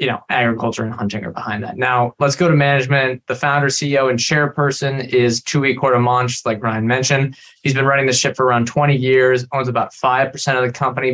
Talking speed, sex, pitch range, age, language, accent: 210 wpm, male, 120-140 Hz, 20-39, English, American